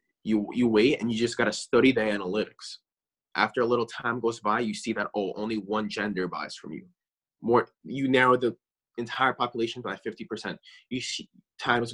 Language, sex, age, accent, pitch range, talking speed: English, male, 20-39, American, 110-130 Hz, 190 wpm